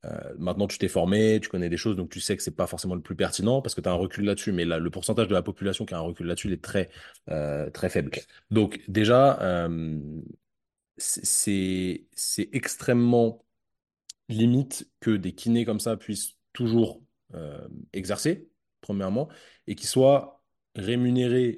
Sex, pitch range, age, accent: male, 90-115 Hz, 20-39, French